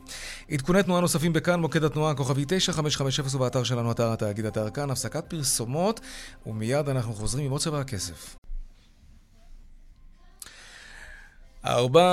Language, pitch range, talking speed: Hebrew, 120-165 Hz, 135 wpm